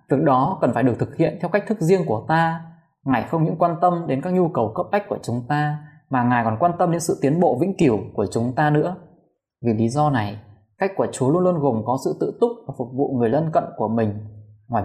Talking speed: 265 wpm